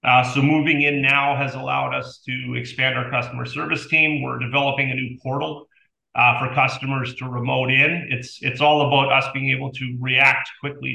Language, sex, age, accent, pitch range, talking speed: English, male, 40-59, American, 115-135 Hz, 190 wpm